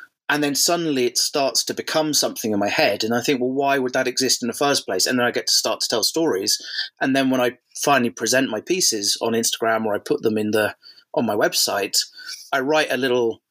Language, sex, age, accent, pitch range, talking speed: English, male, 30-49, British, 110-150 Hz, 245 wpm